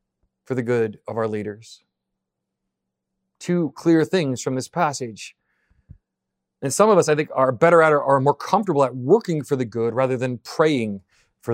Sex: male